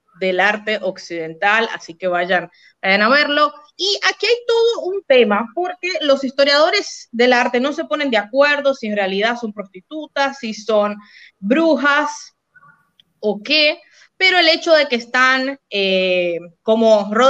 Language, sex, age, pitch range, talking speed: Spanish, female, 20-39, 205-285 Hz, 155 wpm